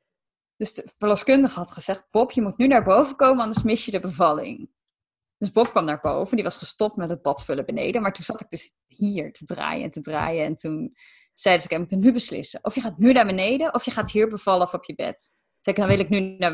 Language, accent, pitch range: Dutch, Dutch, 175-230 Hz